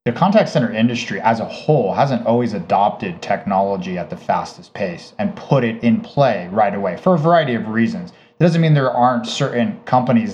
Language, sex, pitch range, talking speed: English, male, 115-130 Hz, 195 wpm